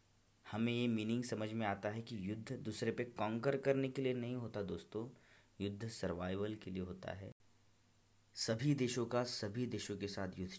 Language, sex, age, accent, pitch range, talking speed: Hindi, male, 30-49, native, 100-125 Hz, 180 wpm